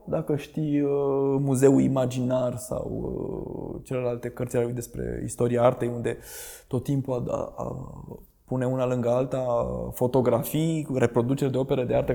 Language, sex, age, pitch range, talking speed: Romanian, male, 20-39, 125-190 Hz, 150 wpm